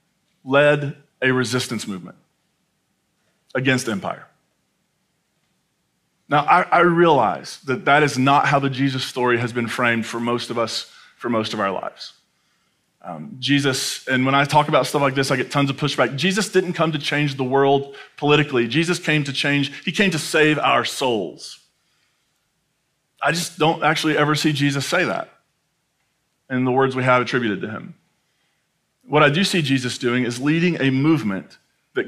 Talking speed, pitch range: 170 wpm, 135-170 Hz